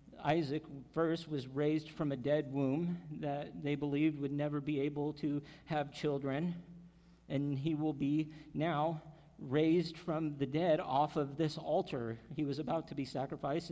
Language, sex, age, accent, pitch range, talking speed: English, male, 50-69, American, 150-180 Hz, 160 wpm